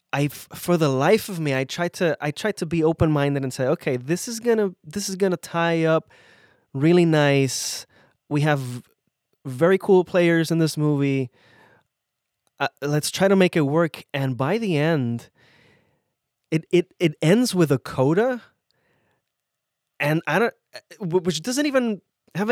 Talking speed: 160 wpm